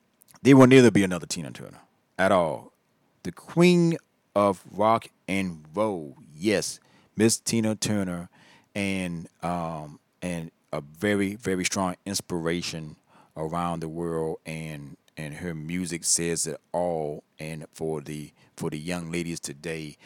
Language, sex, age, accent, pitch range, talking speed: English, male, 40-59, American, 80-100 Hz, 135 wpm